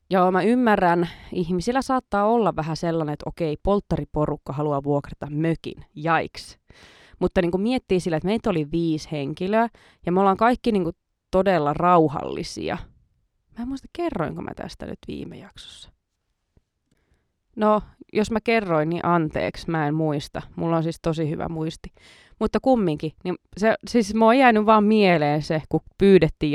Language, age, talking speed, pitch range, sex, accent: Finnish, 20-39, 155 wpm, 155-200 Hz, female, native